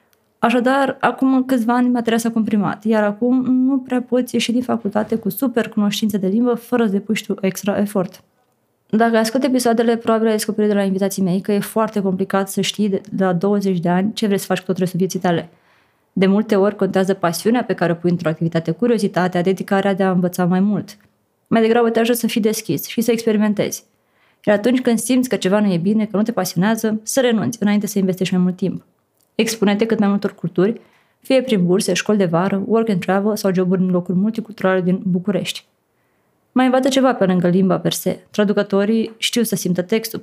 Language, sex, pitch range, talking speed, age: Romanian, female, 190-225 Hz, 205 wpm, 20-39